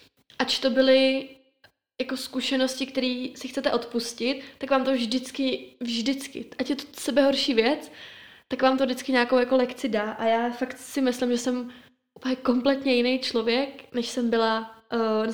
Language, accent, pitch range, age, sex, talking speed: Czech, native, 225-255 Hz, 20-39, female, 170 wpm